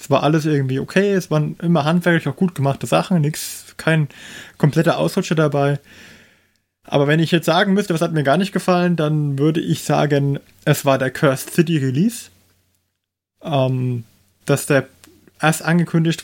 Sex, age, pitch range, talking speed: male, 20-39, 130-165 Hz, 165 wpm